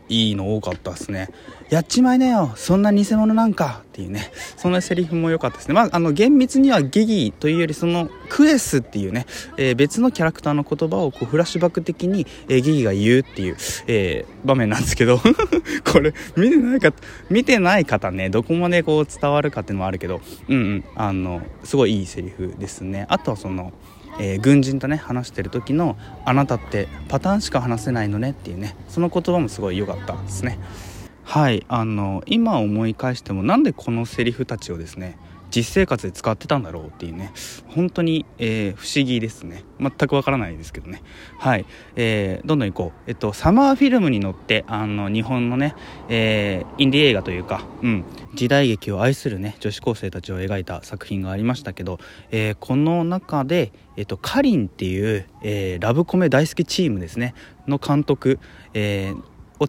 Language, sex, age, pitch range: Japanese, male, 20-39, 100-155 Hz